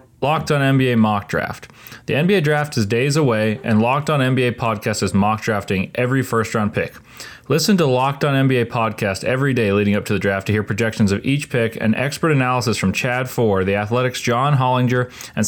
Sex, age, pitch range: male, 30-49, 110-140 Hz